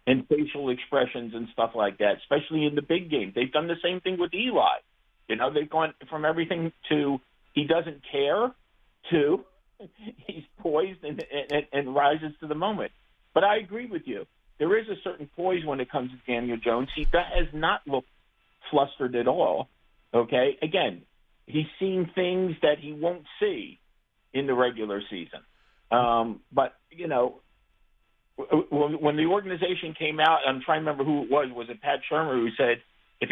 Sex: male